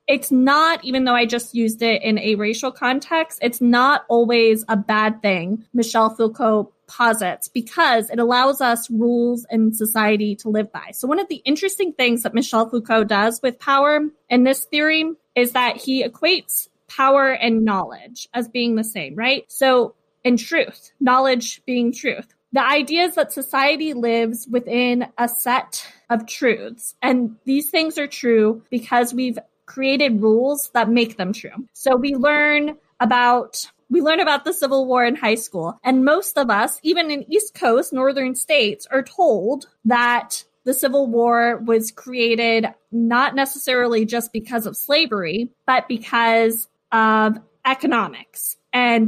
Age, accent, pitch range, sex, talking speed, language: 20-39, American, 225-270 Hz, female, 160 wpm, English